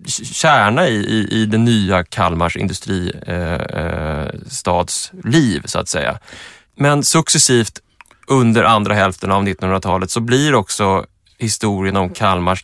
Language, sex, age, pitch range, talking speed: English, male, 20-39, 95-115 Hz, 120 wpm